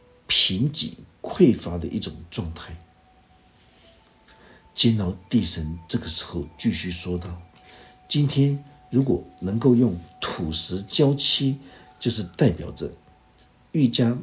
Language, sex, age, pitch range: Chinese, male, 60-79, 85-115 Hz